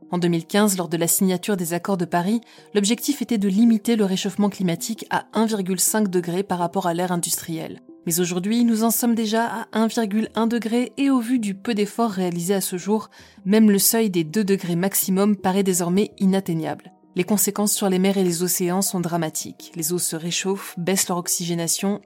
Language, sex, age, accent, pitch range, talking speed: French, female, 20-39, French, 175-215 Hz, 195 wpm